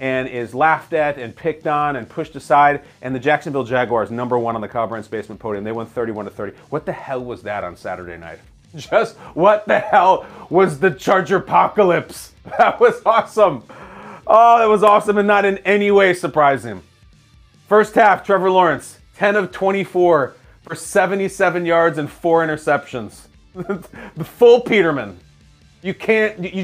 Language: English